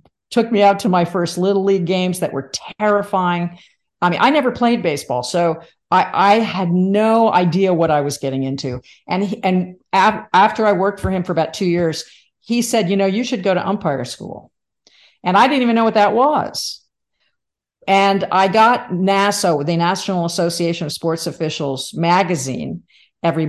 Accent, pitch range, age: American, 160-200 Hz, 50-69